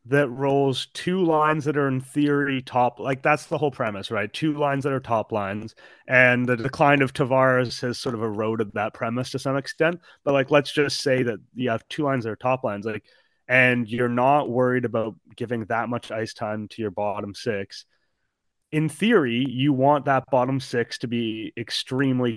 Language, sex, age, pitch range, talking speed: English, male, 30-49, 115-140 Hz, 200 wpm